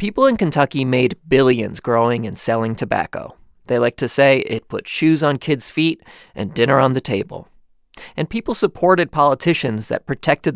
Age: 30-49